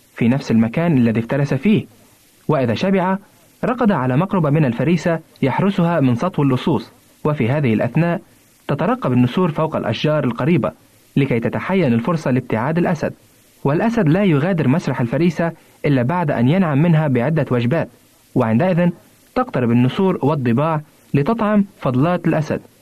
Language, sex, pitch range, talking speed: Arabic, male, 130-180 Hz, 130 wpm